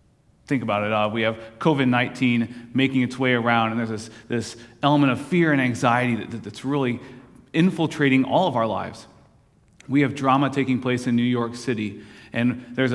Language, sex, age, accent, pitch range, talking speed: English, male, 30-49, American, 115-140 Hz, 185 wpm